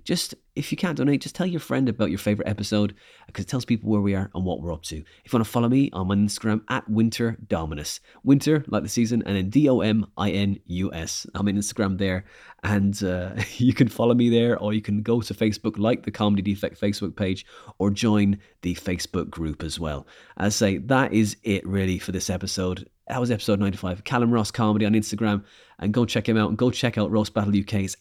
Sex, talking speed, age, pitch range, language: male, 225 wpm, 30-49, 100-120 Hz, English